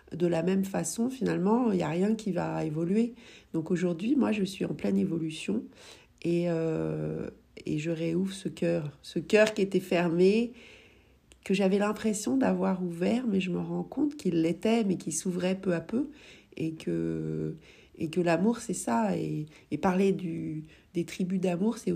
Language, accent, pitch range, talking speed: French, French, 160-200 Hz, 180 wpm